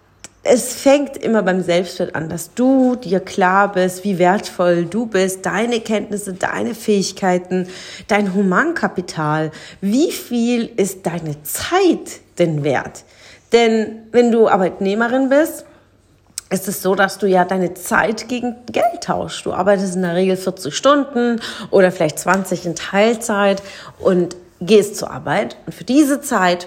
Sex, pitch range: female, 185-235 Hz